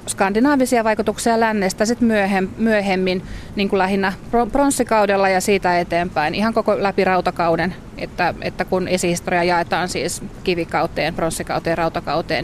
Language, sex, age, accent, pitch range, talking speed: Finnish, female, 30-49, native, 180-215 Hz, 120 wpm